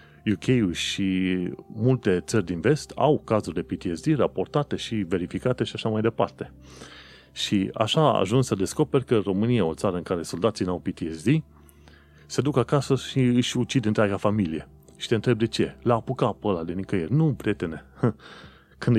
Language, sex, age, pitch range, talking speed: Romanian, male, 30-49, 90-115 Hz, 175 wpm